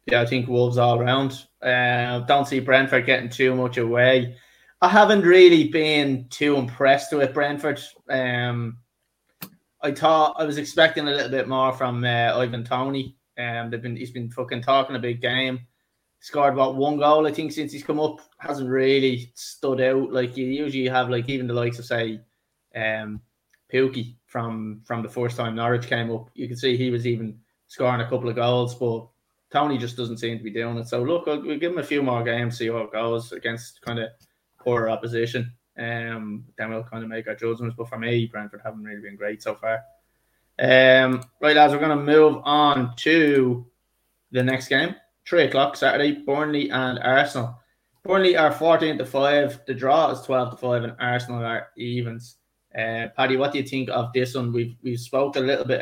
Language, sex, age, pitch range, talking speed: English, male, 20-39, 120-135 Hz, 200 wpm